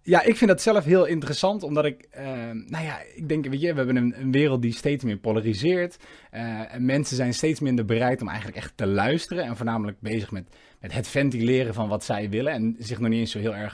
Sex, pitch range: male, 110-150 Hz